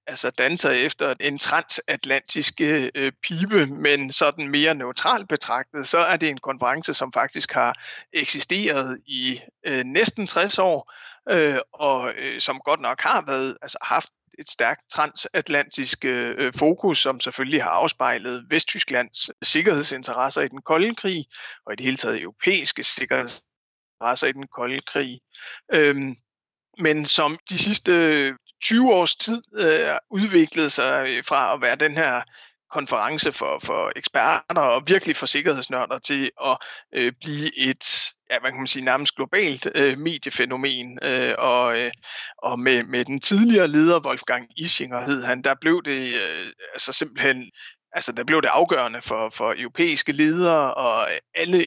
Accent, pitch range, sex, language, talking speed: native, 130-175 Hz, male, Danish, 140 wpm